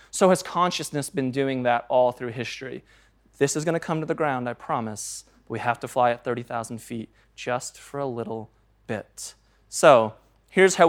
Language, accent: English, American